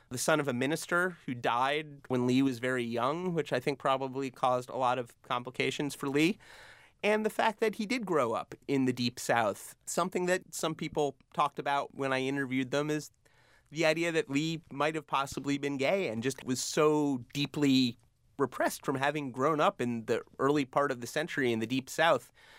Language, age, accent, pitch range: English, 30-49, American, 120-150 Hz